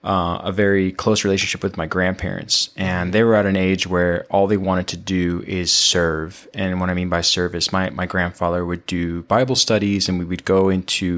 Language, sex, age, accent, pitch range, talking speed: English, male, 20-39, American, 90-105 Hz, 215 wpm